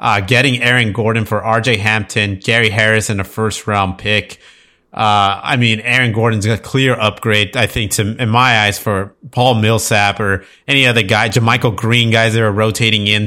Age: 30-49